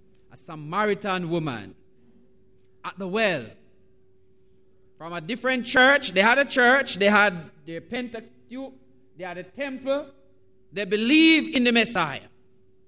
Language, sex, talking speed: English, male, 125 wpm